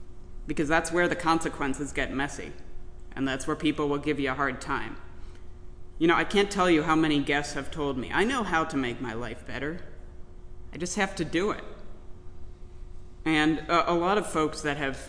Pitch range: 130-165 Hz